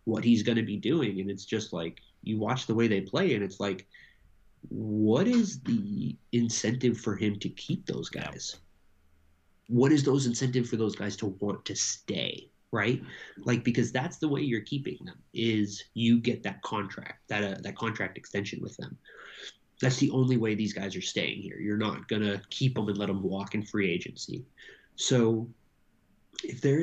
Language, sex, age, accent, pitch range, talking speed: English, male, 30-49, American, 105-125 Hz, 190 wpm